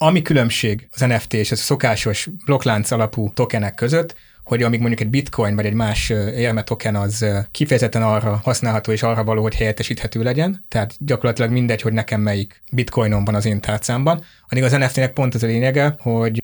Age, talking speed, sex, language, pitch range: 30-49, 185 wpm, male, Hungarian, 110-135 Hz